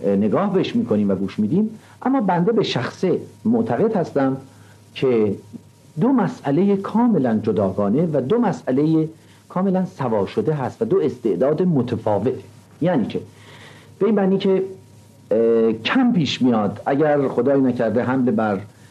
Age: 50-69